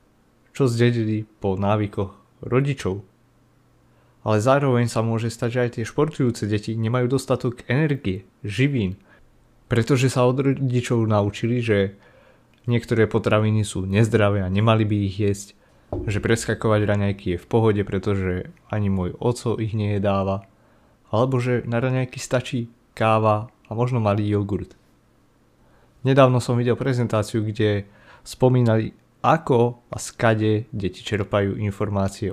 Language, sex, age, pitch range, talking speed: Slovak, male, 30-49, 100-120 Hz, 130 wpm